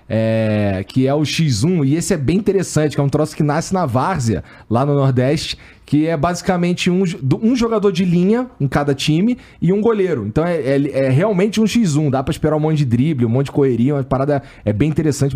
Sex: male